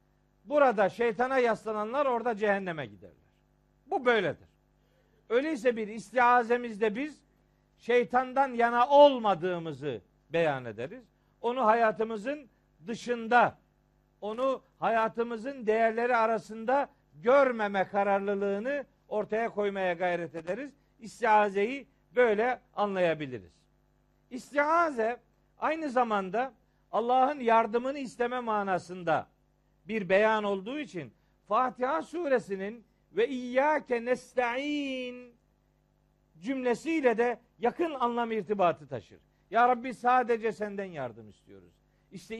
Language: Turkish